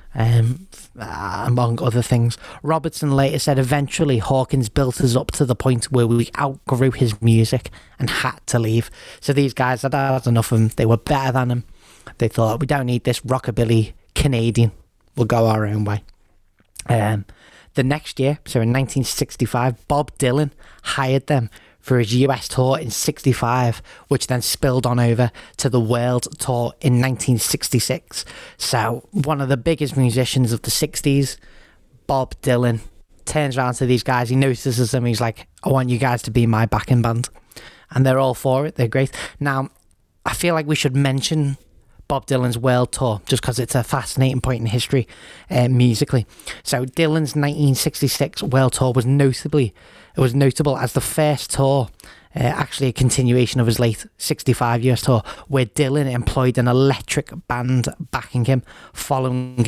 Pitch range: 120-135 Hz